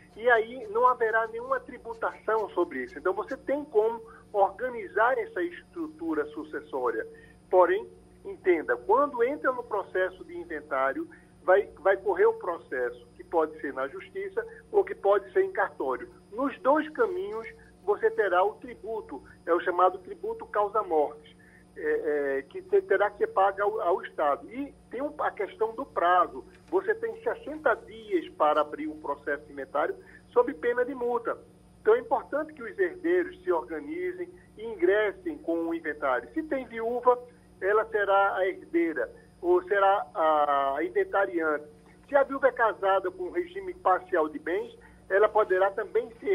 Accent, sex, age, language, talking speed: Brazilian, male, 50-69, Portuguese, 155 wpm